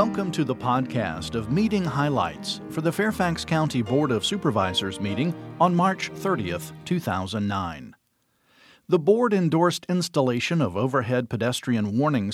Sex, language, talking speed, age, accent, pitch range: male, English, 130 wpm, 50-69, American, 110-155 Hz